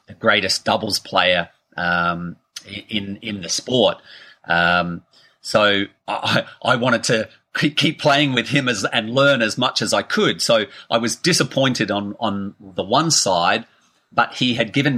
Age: 30-49